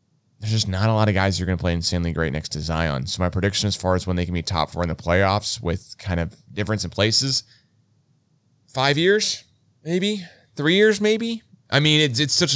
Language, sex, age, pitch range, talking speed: English, male, 30-49, 90-120 Hz, 235 wpm